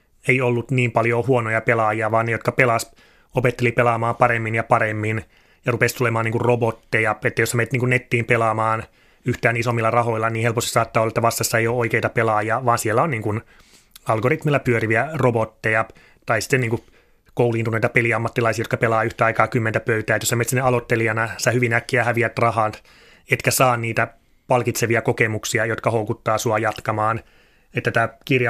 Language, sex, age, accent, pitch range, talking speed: Finnish, male, 30-49, native, 115-125 Hz, 165 wpm